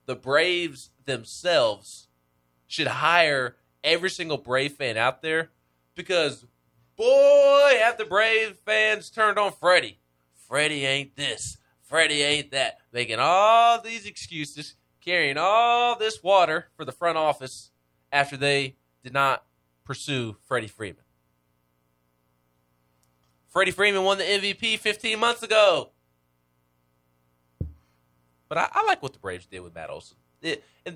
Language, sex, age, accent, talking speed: English, male, 20-39, American, 130 wpm